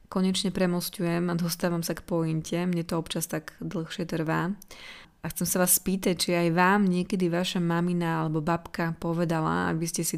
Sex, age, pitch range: female, 20-39, 165-185 Hz